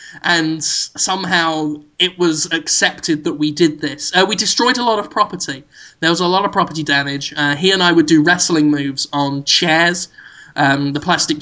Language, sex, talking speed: English, male, 190 wpm